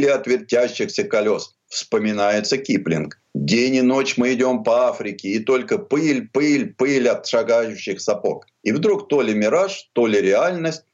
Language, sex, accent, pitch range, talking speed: Russian, male, native, 120-190 Hz, 155 wpm